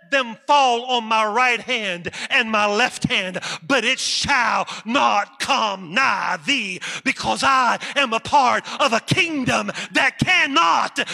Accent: American